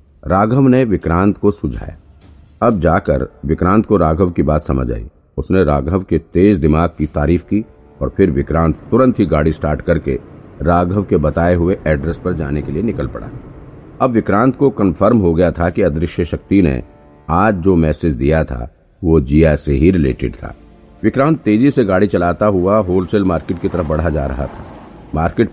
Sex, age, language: male, 50-69, Hindi